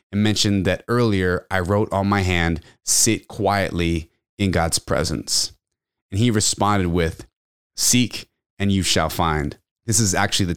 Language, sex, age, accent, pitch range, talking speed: English, male, 30-49, American, 95-120 Hz, 155 wpm